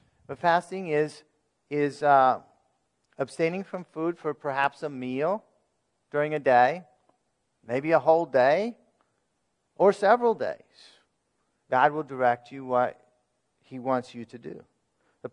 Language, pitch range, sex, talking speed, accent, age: English, 130-160 Hz, male, 130 wpm, American, 50-69